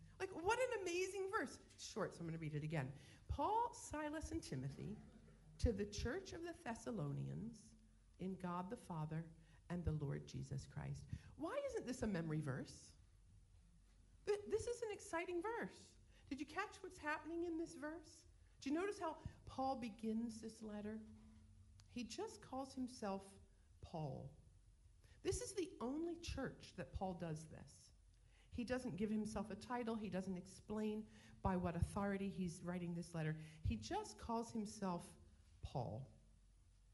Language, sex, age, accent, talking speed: English, female, 50-69, American, 155 wpm